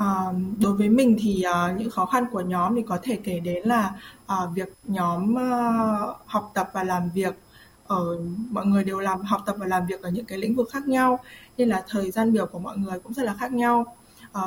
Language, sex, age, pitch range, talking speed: Vietnamese, female, 20-39, 185-240 Hz, 235 wpm